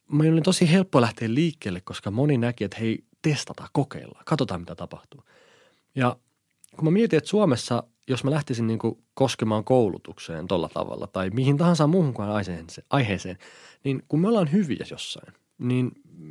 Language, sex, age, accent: Finnish, male, 30-49, native